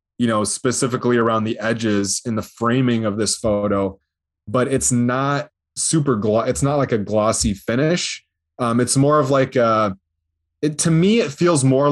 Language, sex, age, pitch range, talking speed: English, male, 20-39, 110-130 Hz, 170 wpm